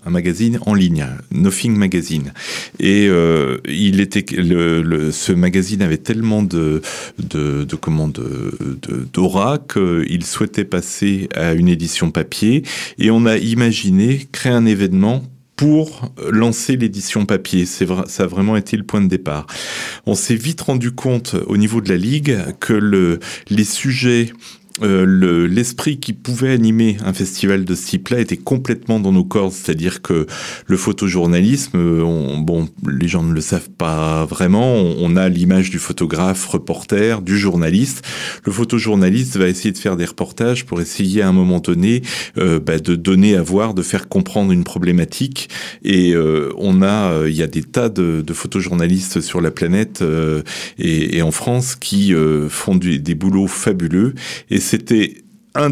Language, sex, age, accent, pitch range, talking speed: French, male, 40-59, French, 85-115 Hz, 170 wpm